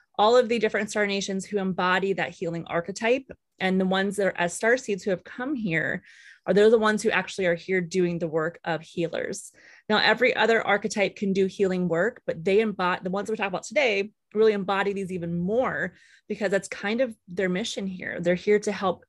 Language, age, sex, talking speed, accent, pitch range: English, 20-39, female, 215 wpm, American, 175-210 Hz